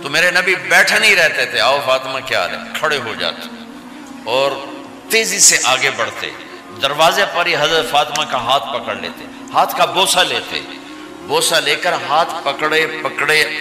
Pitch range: 130-180 Hz